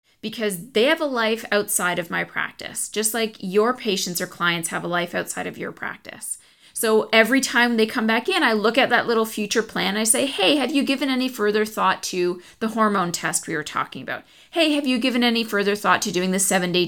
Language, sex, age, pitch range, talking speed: English, female, 30-49, 195-245 Hz, 230 wpm